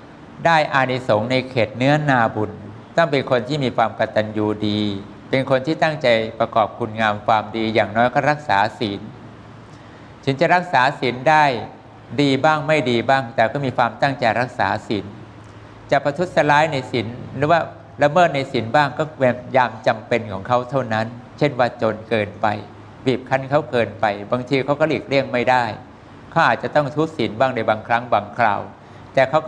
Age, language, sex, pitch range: 60-79, English, male, 110-140 Hz